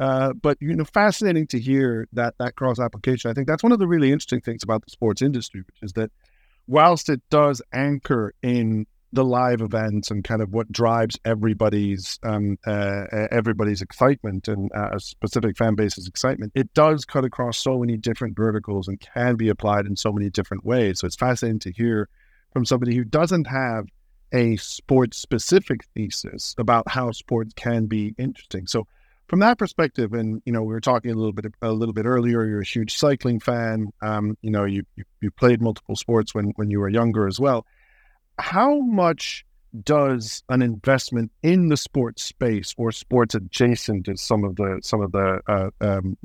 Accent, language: American, English